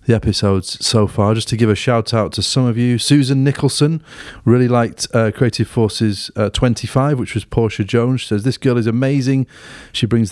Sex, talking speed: male, 210 wpm